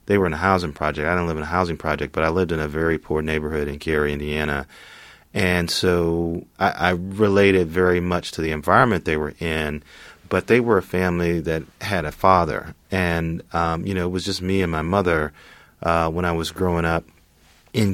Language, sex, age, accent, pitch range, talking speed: English, male, 30-49, American, 75-90 Hz, 215 wpm